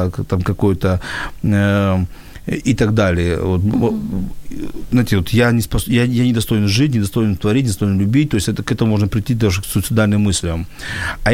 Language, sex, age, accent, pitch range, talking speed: Ukrainian, male, 40-59, native, 100-125 Hz, 160 wpm